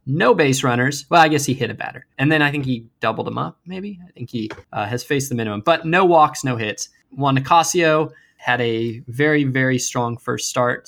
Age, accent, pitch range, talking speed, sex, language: 20-39, American, 115-150 Hz, 225 wpm, male, English